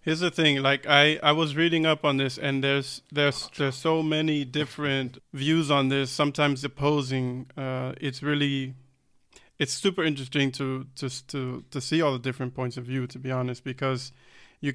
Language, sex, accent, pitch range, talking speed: English, male, American, 130-145 Hz, 185 wpm